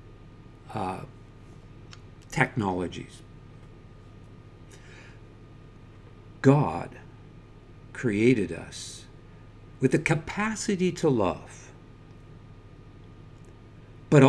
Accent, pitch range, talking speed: American, 110-145 Hz, 45 wpm